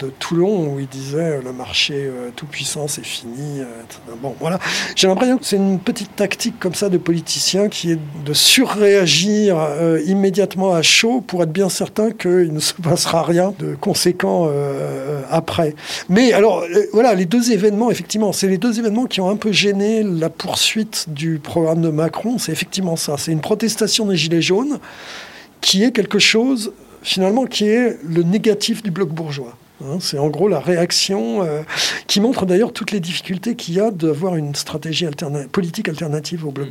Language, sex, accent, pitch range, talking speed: French, male, French, 150-200 Hz, 190 wpm